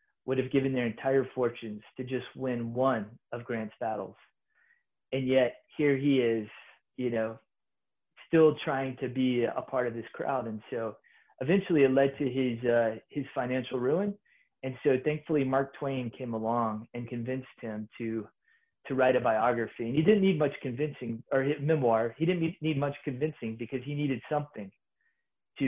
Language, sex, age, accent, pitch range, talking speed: English, male, 30-49, American, 115-135 Hz, 175 wpm